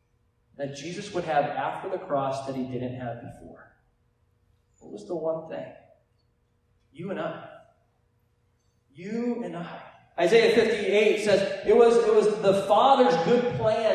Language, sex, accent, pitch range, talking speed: English, male, American, 145-215 Hz, 140 wpm